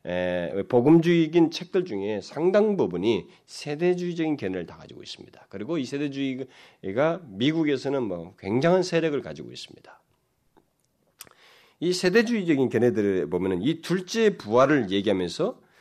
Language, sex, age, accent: Korean, male, 40-59, native